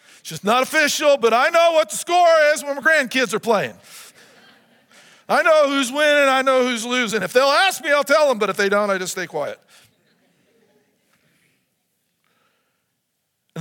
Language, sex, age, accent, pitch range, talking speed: English, male, 50-69, American, 140-230 Hz, 175 wpm